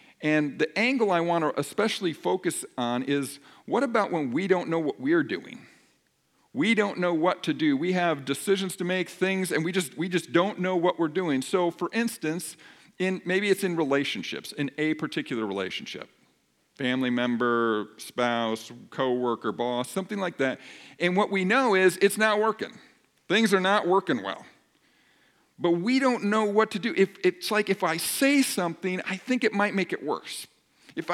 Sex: male